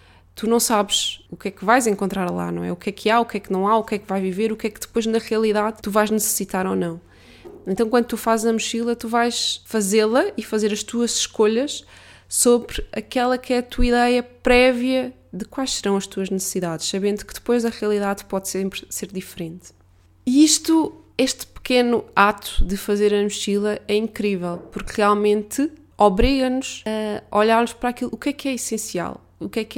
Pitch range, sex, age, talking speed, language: 190-230 Hz, female, 20-39, 215 wpm, Portuguese